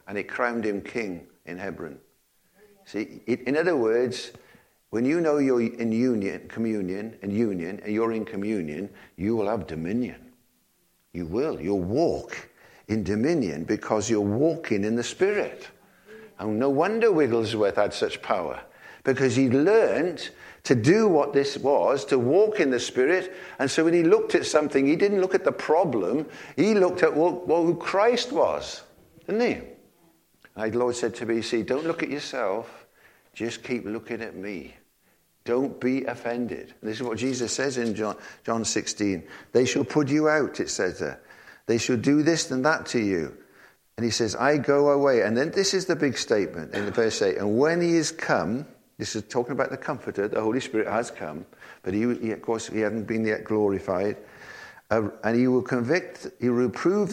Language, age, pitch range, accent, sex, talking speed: English, 60-79, 110-155 Hz, British, male, 185 wpm